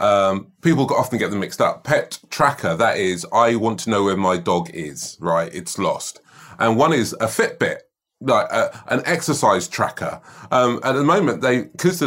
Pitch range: 110-150 Hz